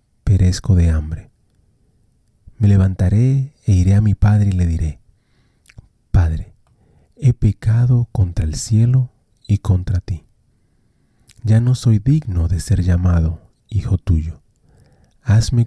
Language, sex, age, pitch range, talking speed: Spanish, male, 40-59, 95-120 Hz, 125 wpm